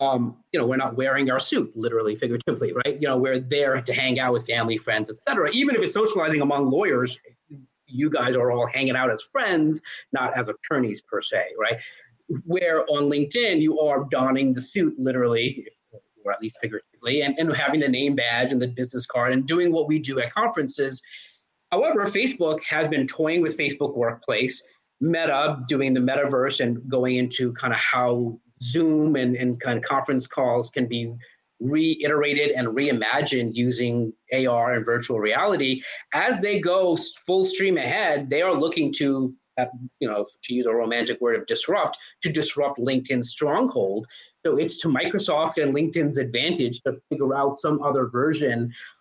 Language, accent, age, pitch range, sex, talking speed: English, American, 30-49, 120-150 Hz, male, 180 wpm